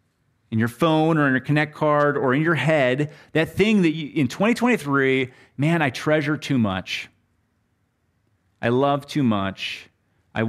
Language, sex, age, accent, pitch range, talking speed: English, male, 30-49, American, 100-130 Hz, 160 wpm